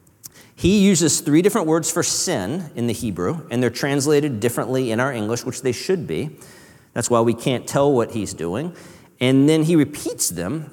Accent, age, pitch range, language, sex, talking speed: American, 40-59, 120-160 Hz, English, male, 190 wpm